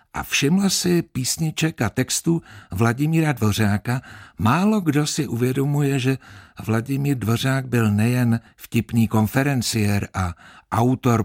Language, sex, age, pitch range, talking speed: Czech, male, 60-79, 105-140 Hz, 110 wpm